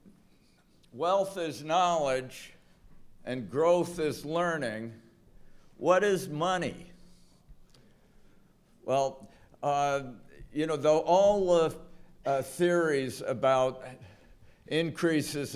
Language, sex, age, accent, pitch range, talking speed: English, male, 60-79, American, 135-165 Hz, 80 wpm